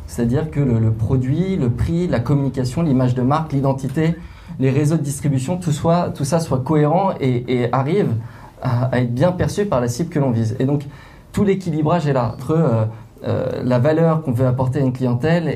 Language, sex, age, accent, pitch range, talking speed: French, male, 20-39, French, 115-140 Hz, 210 wpm